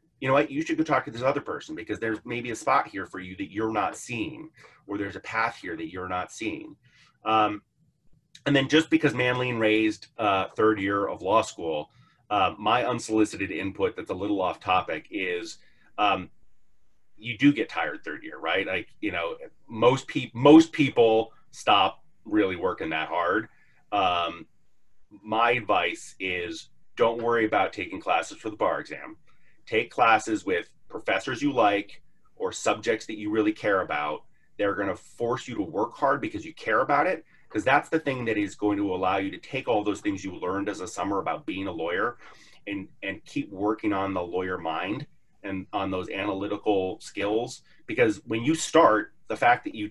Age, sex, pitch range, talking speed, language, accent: 30-49, male, 105-150 Hz, 190 wpm, English, American